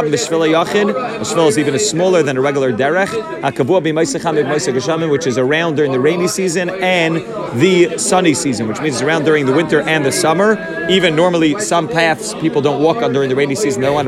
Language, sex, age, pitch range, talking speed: English, male, 30-49, 140-180 Hz, 190 wpm